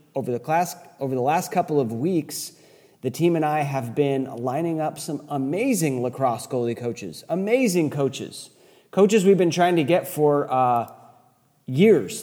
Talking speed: 160 wpm